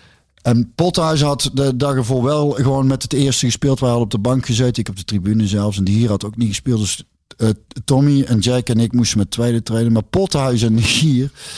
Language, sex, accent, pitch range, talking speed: Dutch, male, Dutch, 110-135 Hz, 235 wpm